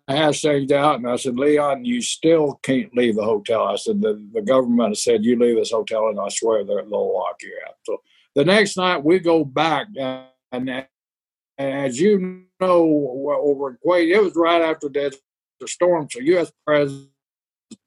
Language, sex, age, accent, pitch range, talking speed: English, male, 60-79, American, 140-180 Hz, 180 wpm